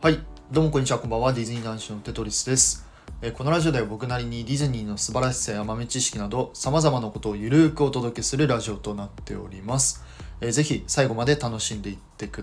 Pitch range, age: 110-145 Hz, 20-39